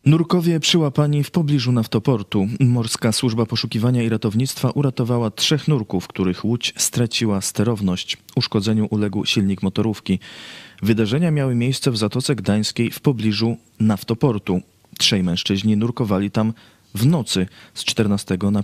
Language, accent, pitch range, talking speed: Polish, native, 100-125 Hz, 125 wpm